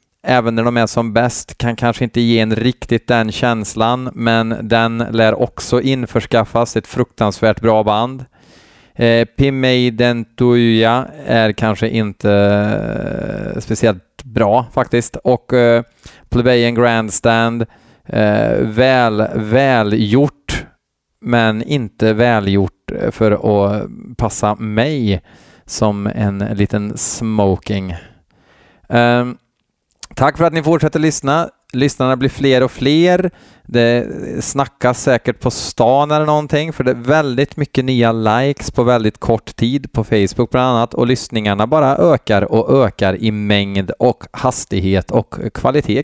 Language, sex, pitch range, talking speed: Swedish, male, 110-130 Hz, 130 wpm